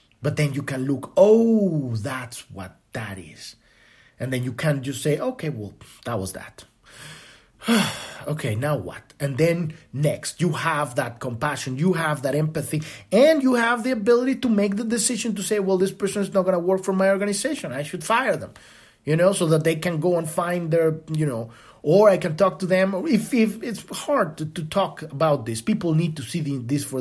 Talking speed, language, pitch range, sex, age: 210 wpm, English, 145-200 Hz, male, 30-49